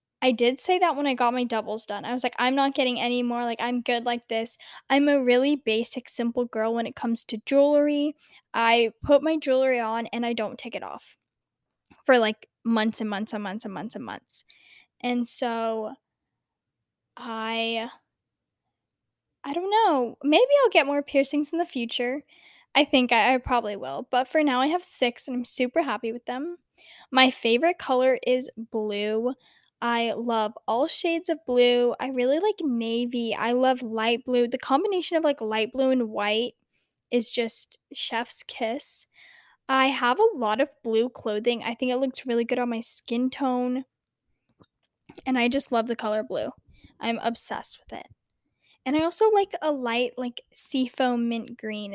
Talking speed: 180 wpm